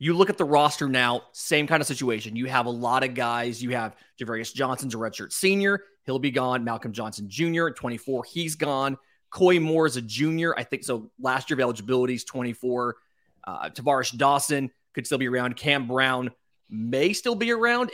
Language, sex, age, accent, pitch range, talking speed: English, male, 30-49, American, 125-155 Hz, 195 wpm